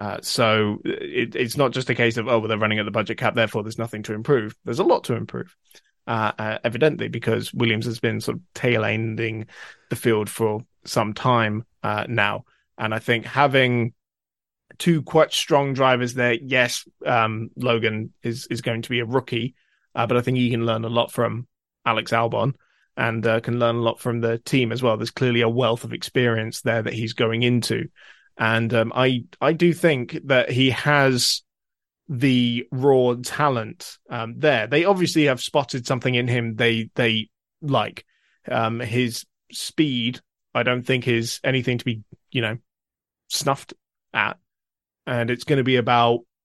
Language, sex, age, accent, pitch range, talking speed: English, male, 20-39, British, 115-130 Hz, 180 wpm